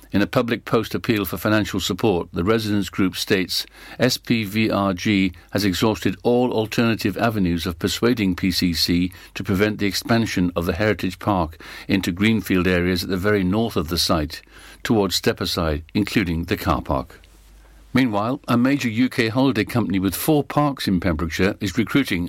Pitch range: 95-115 Hz